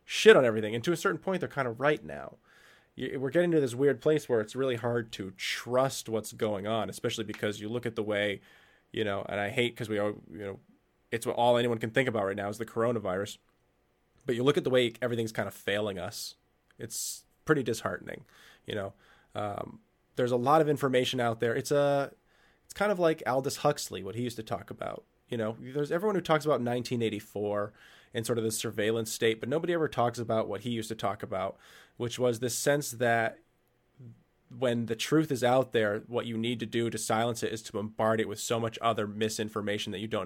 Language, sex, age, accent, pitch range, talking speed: English, male, 20-39, American, 110-130 Hz, 225 wpm